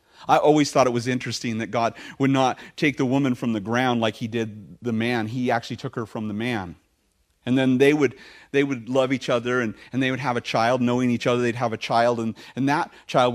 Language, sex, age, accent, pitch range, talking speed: English, male, 40-59, American, 120-175 Hz, 245 wpm